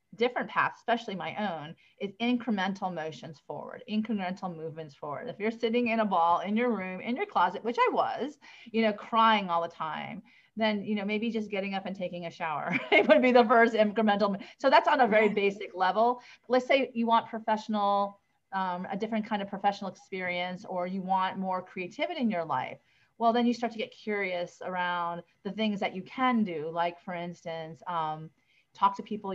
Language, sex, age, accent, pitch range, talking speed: English, female, 30-49, American, 175-215 Hz, 200 wpm